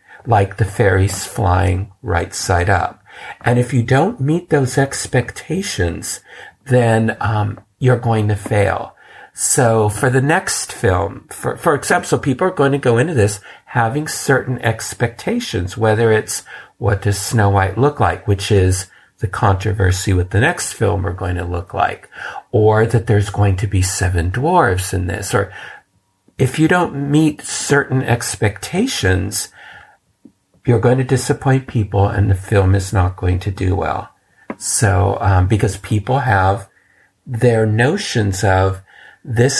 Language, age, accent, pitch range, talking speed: English, 50-69, American, 95-120 Hz, 150 wpm